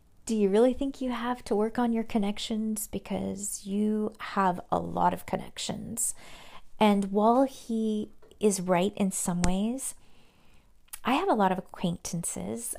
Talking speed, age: 150 wpm, 40-59